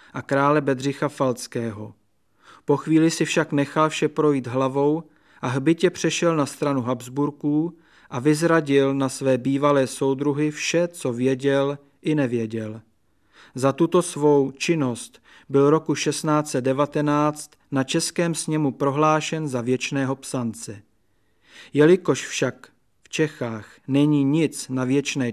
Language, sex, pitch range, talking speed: Czech, male, 130-155 Hz, 120 wpm